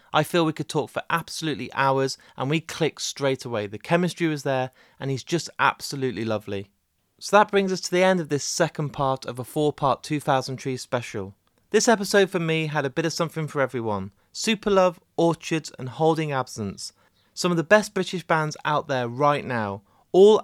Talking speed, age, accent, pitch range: 195 wpm, 30-49, British, 130-170 Hz